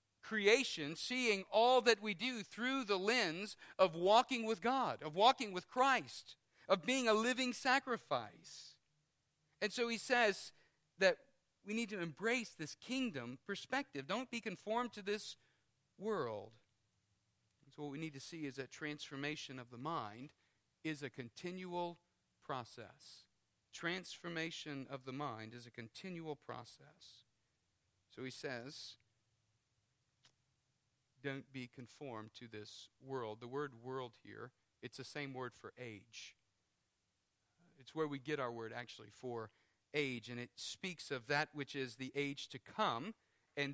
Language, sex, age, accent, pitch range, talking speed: English, male, 50-69, American, 125-205 Hz, 145 wpm